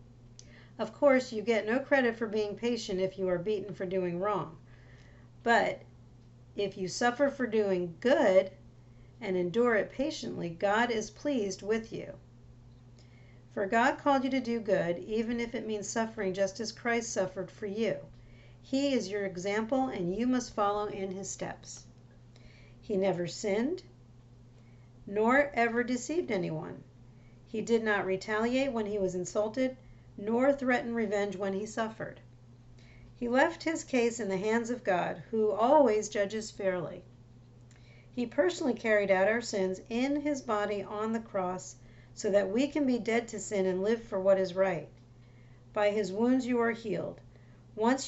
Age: 50-69